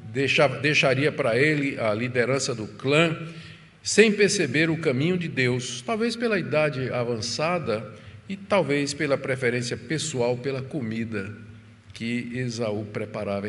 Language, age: Portuguese, 50-69